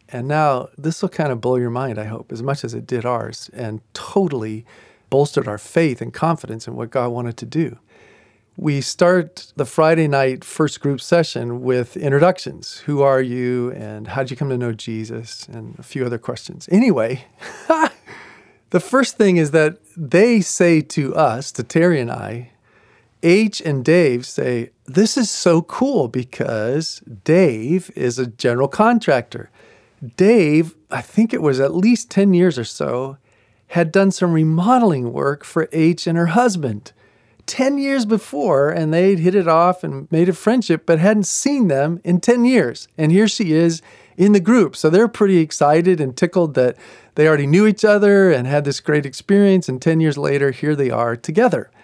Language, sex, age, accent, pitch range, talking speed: English, male, 40-59, American, 125-185 Hz, 180 wpm